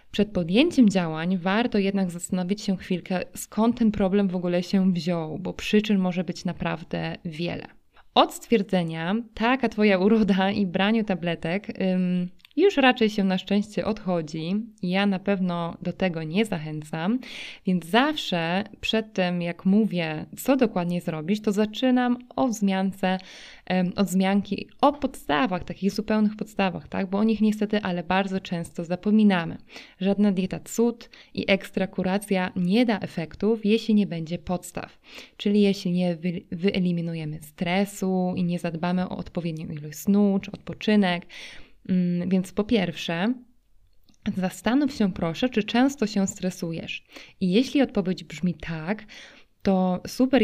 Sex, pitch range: female, 180-215 Hz